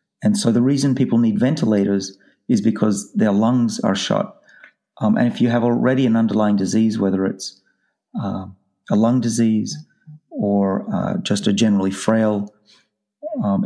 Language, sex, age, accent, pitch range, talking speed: English, male, 40-59, Australian, 100-145 Hz, 155 wpm